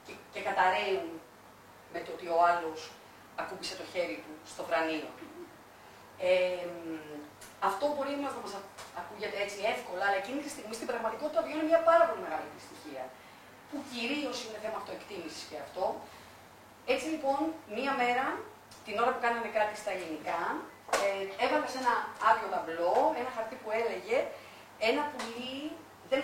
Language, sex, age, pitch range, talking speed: Greek, female, 40-59, 190-280 Hz, 150 wpm